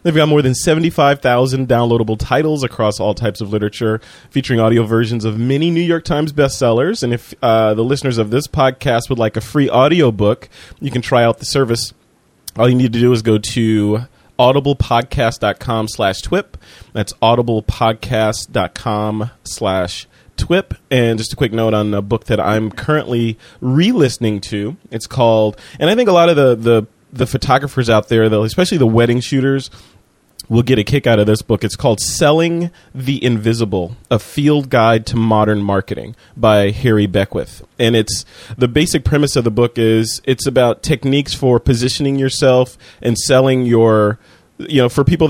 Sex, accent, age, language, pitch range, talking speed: male, American, 30-49, English, 110-135 Hz, 175 wpm